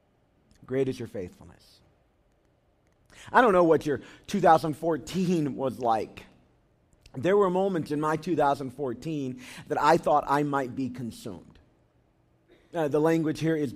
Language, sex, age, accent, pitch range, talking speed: English, male, 40-59, American, 135-195 Hz, 130 wpm